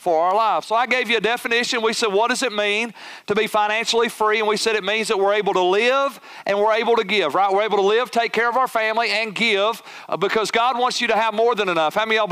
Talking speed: 290 wpm